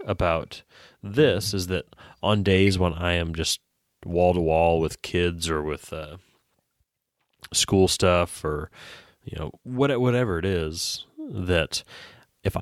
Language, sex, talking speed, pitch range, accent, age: English, male, 125 wpm, 80-100 Hz, American, 30-49